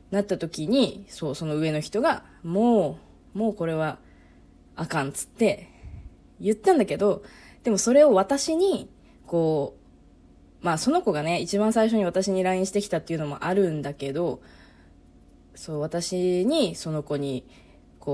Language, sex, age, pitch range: Japanese, female, 20-39, 145-210 Hz